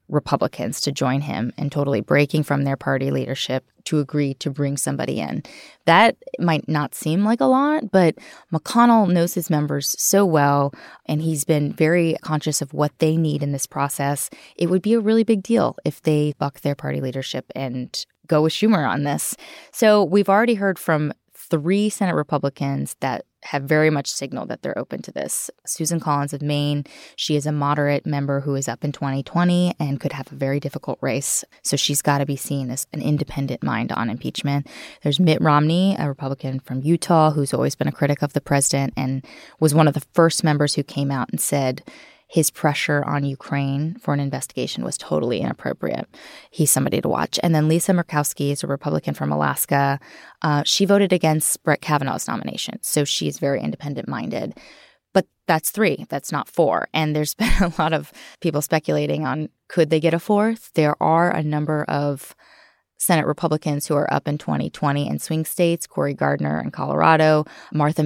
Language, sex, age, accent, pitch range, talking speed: English, female, 20-39, American, 140-170 Hz, 190 wpm